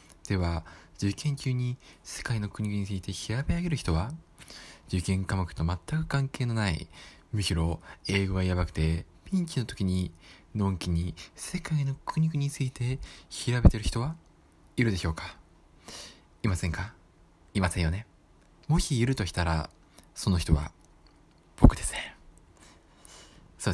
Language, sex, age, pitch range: Japanese, male, 20-39, 90-135 Hz